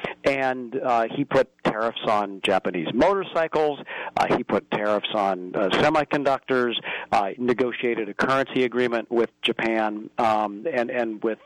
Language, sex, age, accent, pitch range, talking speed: English, male, 40-59, American, 110-140 Hz, 135 wpm